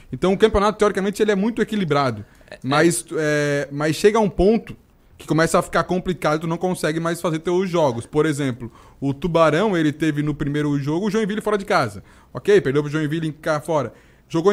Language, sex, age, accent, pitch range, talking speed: Portuguese, male, 20-39, Brazilian, 155-215 Hz, 195 wpm